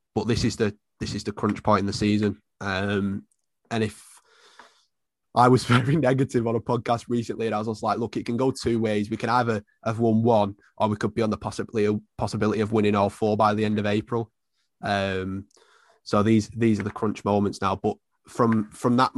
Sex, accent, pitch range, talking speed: male, British, 105-115 Hz, 220 wpm